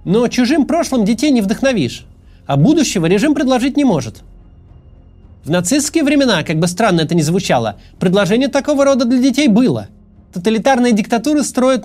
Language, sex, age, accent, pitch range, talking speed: Russian, male, 30-49, native, 165-255 Hz, 150 wpm